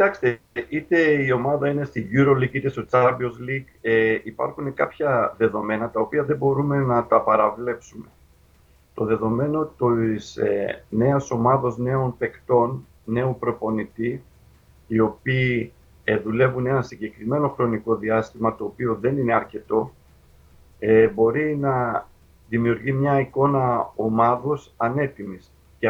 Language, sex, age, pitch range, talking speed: Greek, male, 50-69, 110-125 Hz, 125 wpm